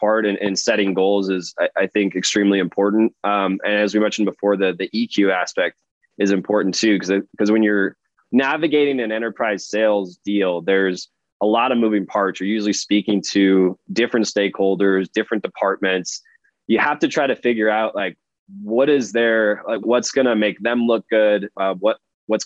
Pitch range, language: 95-110 Hz, English